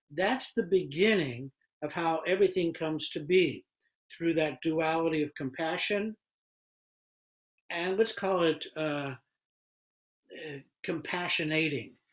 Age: 60-79